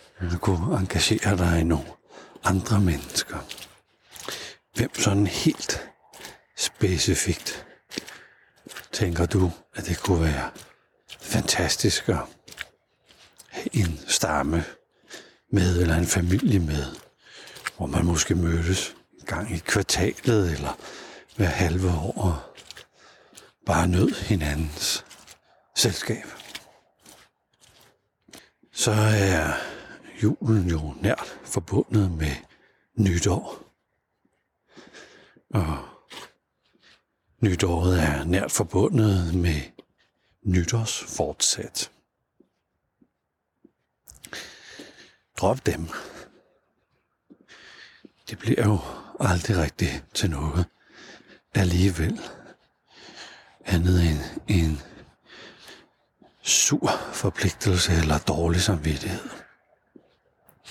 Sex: male